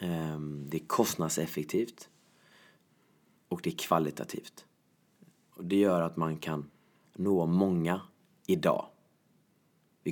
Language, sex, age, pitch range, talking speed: Swedish, male, 30-49, 85-100 Hz, 100 wpm